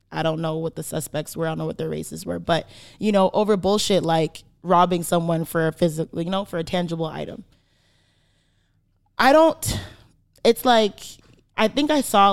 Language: English